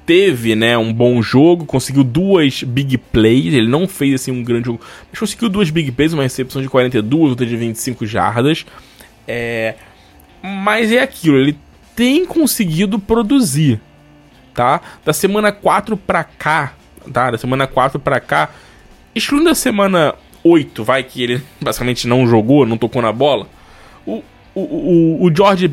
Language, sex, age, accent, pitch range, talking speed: Portuguese, male, 10-29, Brazilian, 130-195 Hz, 155 wpm